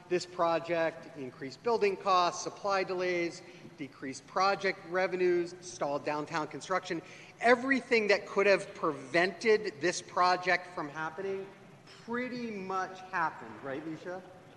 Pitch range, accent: 150-185 Hz, American